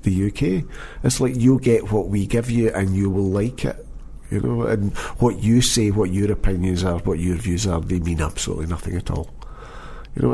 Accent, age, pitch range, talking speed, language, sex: British, 50-69, 90-110 Hz, 215 wpm, English, male